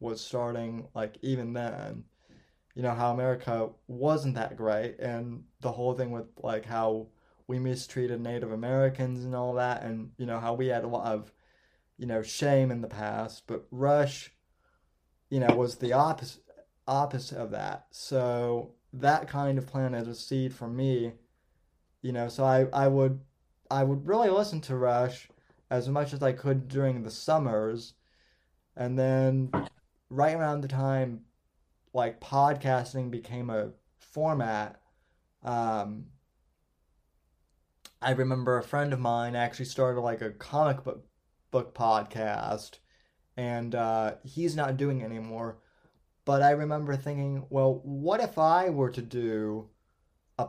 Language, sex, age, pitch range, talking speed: English, male, 20-39, 110-135 Hz, 150 wpm